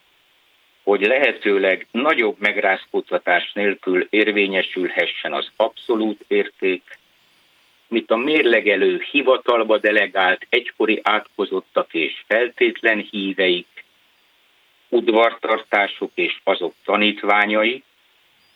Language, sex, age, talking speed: Hungarian, male, 60-79, 75 wpm